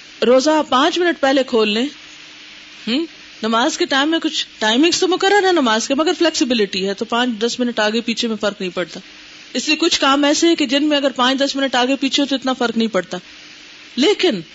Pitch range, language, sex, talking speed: 220-295 Hz, Urdu, female, 215 wpm